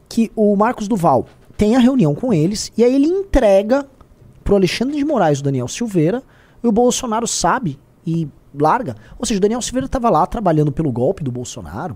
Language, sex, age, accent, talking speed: Portuguese, male, 20-39, Brazilian, 195 wpm